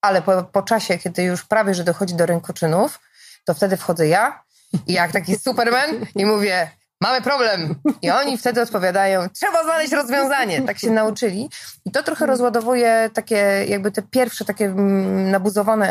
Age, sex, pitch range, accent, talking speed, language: 20-39, female, 175-220 Hz, native, 160 wpm, Polish